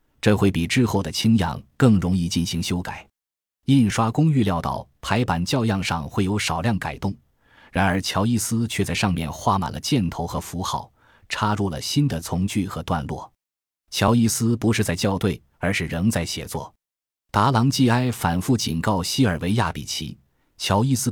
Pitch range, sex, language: 85-115 Hz, male, Chinese